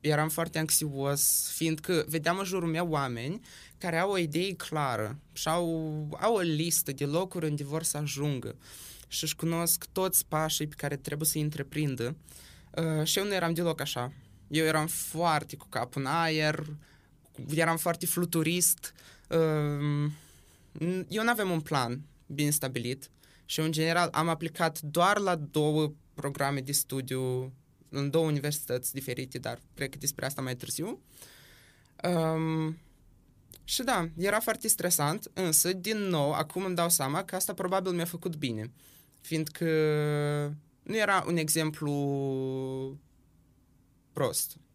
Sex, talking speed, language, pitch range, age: male, 145 wpm, Romanian, 140-175 Hz, 20-39